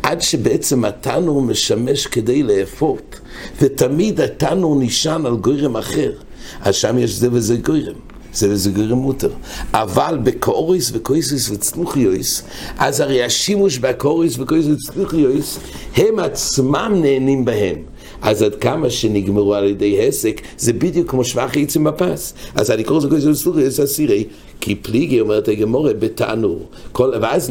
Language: English